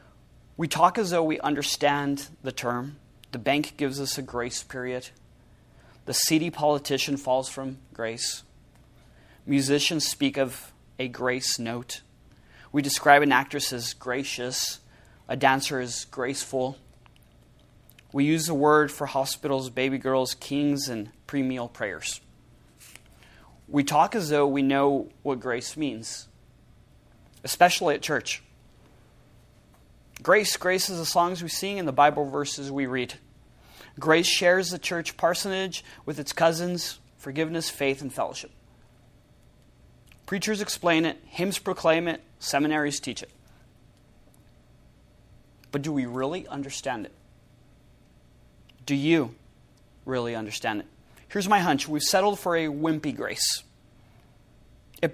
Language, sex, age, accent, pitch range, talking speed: English, male, 30-49, American, 130-160 Hz, 125 wpm